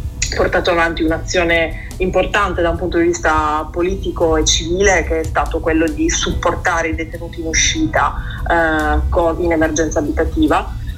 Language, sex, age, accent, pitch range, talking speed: Italian, female, 30-49, native, 165-220 Hz, 140 wpm